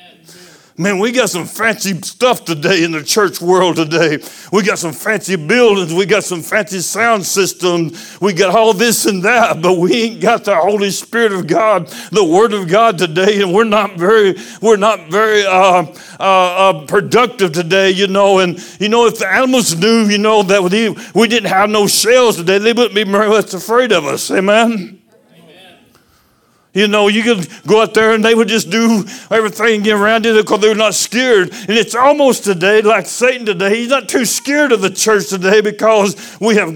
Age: 60-79